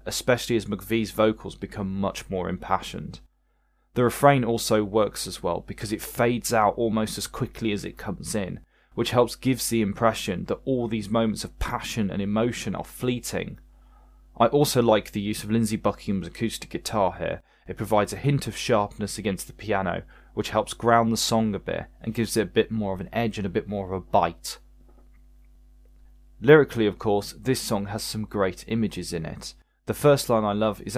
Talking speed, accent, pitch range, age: 195 wpm, British, 100-115 Hz, 20-39